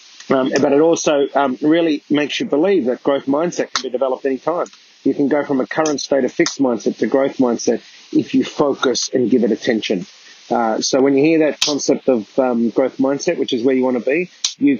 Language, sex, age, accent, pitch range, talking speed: English, male, 30-49, Australian, 130-160 Hz, 225 wpm